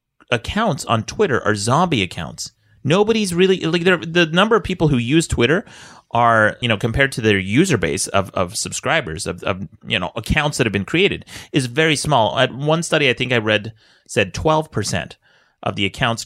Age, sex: 30-49, male